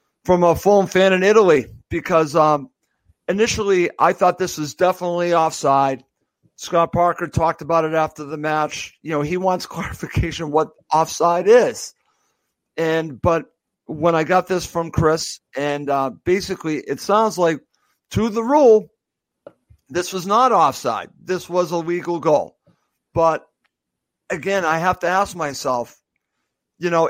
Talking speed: 145 wpm